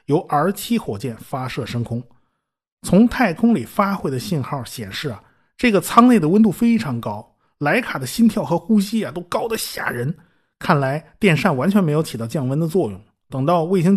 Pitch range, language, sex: 125-180 Hz, Chinese, male